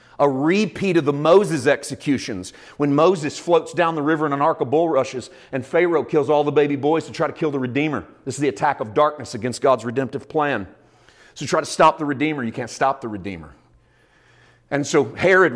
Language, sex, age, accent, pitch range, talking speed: English, male, 40-59, American, 140-180 Hz, 210 wpm